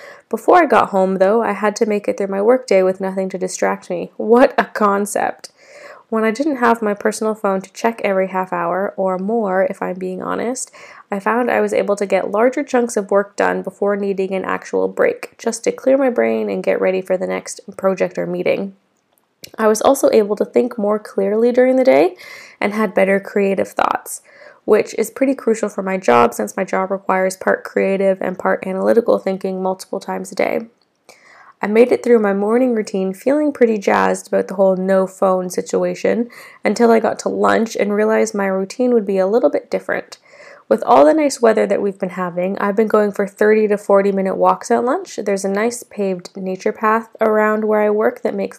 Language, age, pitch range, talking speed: English, 10-29, 190-230 Hz, 210 wpm